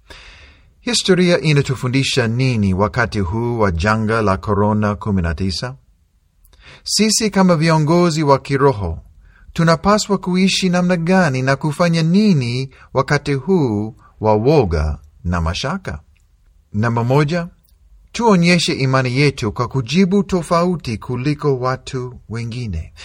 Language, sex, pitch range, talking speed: Swahili, male, 100-155 Hz, 100 wpm